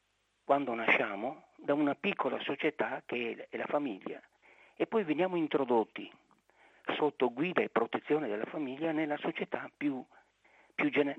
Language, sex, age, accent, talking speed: Italian, male, 50-69, native, 135 wpm